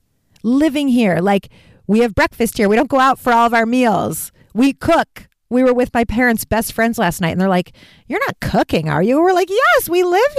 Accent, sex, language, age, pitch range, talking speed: American, female, English, 40-59, 170-270 Hz, 230 wpm